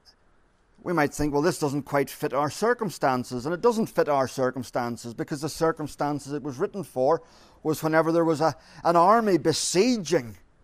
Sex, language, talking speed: male, English, 170 wpm